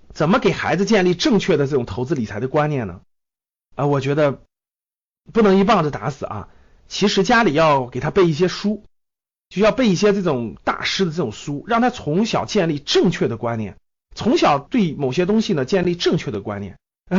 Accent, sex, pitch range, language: native, male, 125-195 Hz, Chinese